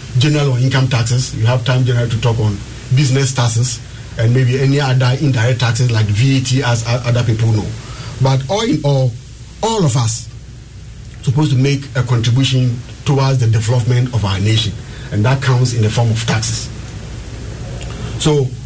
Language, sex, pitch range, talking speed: English, male, 115-135 Hz, 165 wpm